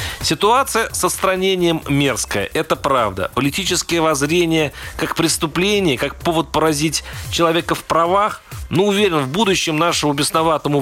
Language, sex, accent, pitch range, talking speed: Russian, male, native, 130-170 Hz, 120 wpm